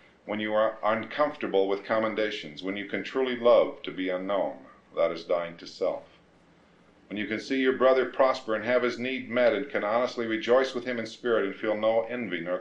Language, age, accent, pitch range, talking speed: English, 50-69, American, 95-125 Hz, 210 wpm